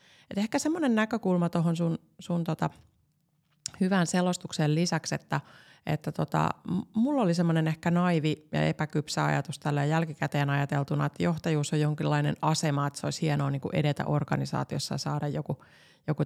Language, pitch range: Finnish, 145-165 Hz